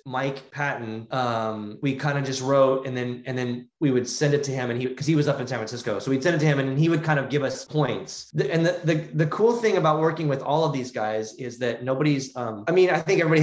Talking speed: 285 wpm